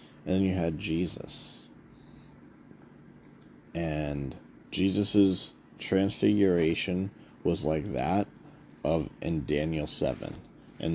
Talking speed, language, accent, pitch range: 90 wpm, English, American, 80-95 Hz